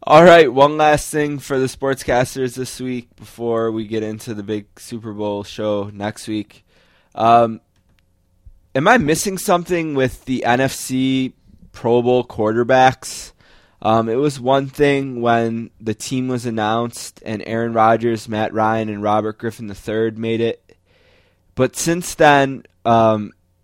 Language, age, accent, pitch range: English, 20-39, American, 105-130 Hz